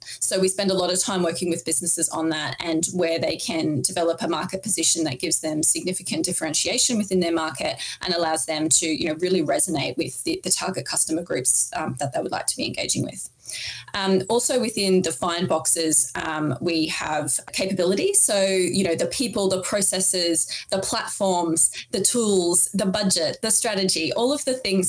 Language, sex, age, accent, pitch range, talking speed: English, female, 20-39, Australian, 165-195 Hz, 190 wpm